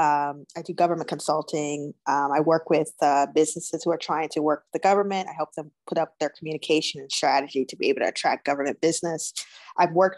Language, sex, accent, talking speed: English, female, American, 220 wpm